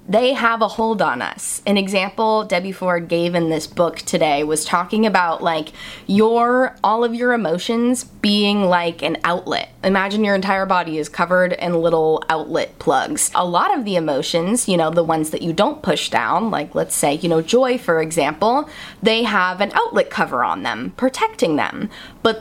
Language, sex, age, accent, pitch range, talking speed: English, female, 20-39, American, 175-230 Hz, 185 wpm